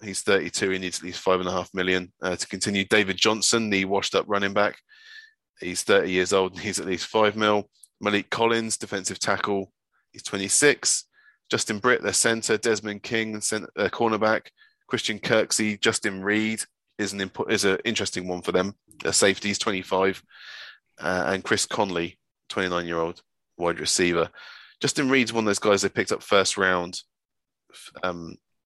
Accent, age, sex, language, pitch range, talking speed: British, 20-39, male, English, 90-110 Hz, 180 wpm